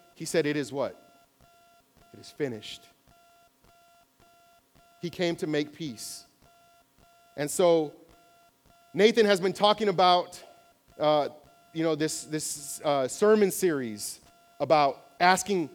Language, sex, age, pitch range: English, male, 40-59, 155-230 Hz